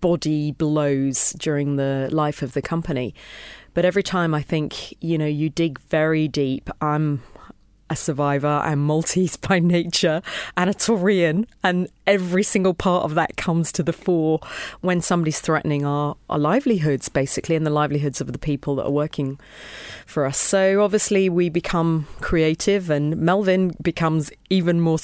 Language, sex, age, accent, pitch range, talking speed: English, female, 30-49, British, 155-195 Hz, 160 wpm